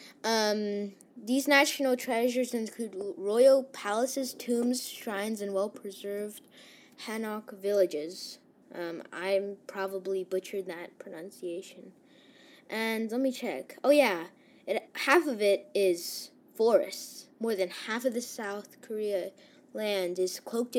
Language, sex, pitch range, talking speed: English, female, 205-280 Hz, 115 wpm